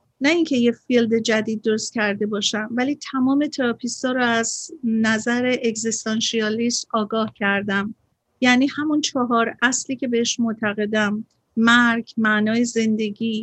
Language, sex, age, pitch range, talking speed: Persian, female, 50-69, 215-255 Hz, 120 wpm